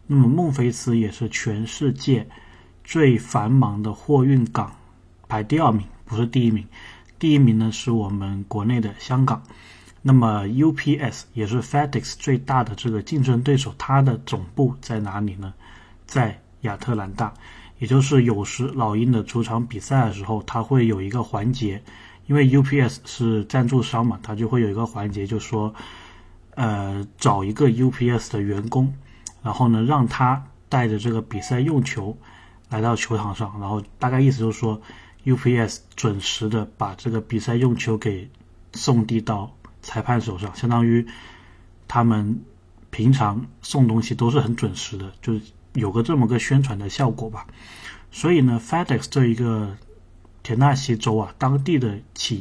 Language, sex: Chinese, male